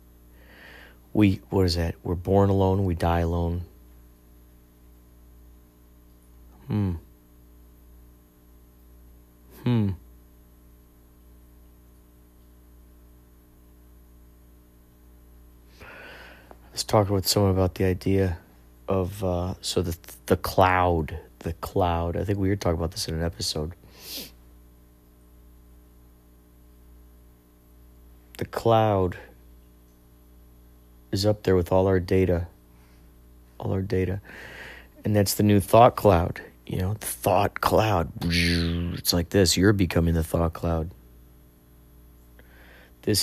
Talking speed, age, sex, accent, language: 95 wpm, 40-59, male, American, English